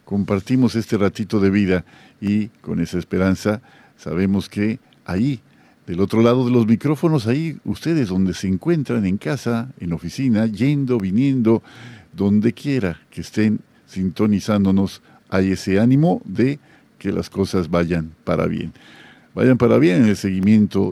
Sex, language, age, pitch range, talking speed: male, Spanish, 50-69, 100-135 Hz, 145 wpm